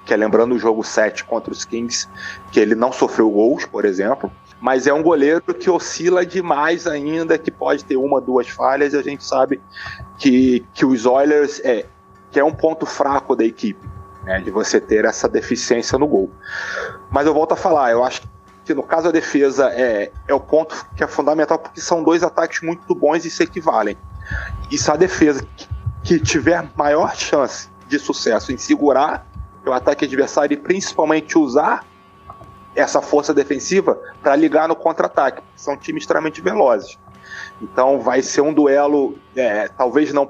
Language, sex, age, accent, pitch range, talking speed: English, male, 30-49, Brazilian, 120-160 Hz, 175 wpm